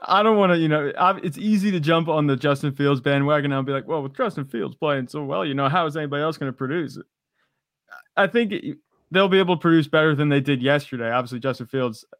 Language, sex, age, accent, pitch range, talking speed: English, male, 20-39, American, 120-150 Hz, 240 wpm